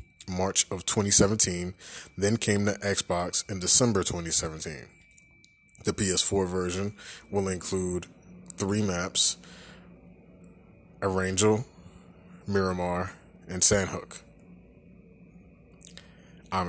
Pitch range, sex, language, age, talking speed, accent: 90-110 Hz, male, English, 20-39, 80 wpm, American